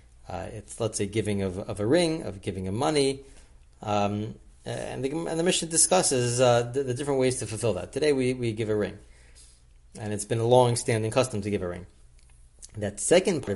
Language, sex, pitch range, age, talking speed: English, male, 100-125 Hz, 30-49, 215 wpm